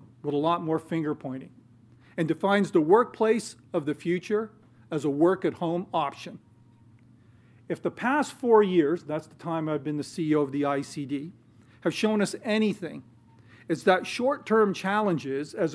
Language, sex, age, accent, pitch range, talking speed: English, male, 50-69, American, 125-190 Hz, 170 wpm